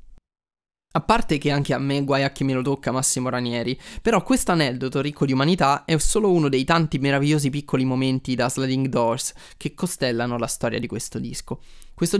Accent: native